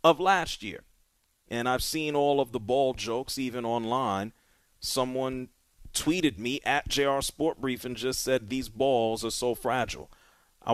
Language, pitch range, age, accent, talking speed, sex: English, 120-175 Hz, 40-59, American, 150 wpm, male